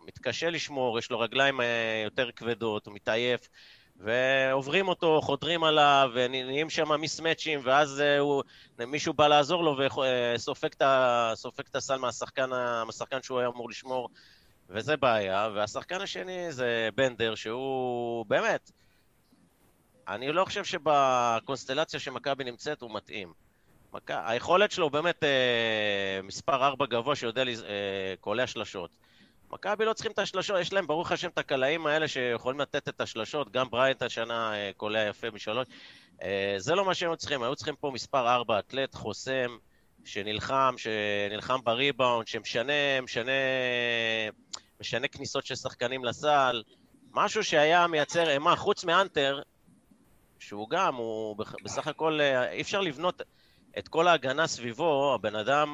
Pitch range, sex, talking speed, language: 115-150 Hz, male, 130 wpm, Hebrew